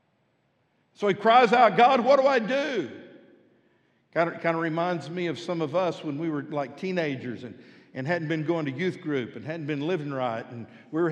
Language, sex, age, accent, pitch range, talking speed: English, male, 60-79, American, 135-185 Hz, 210 wpm